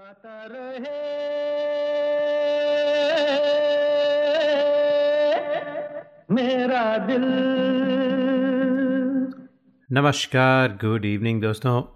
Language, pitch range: Hindi, 100-135 Hz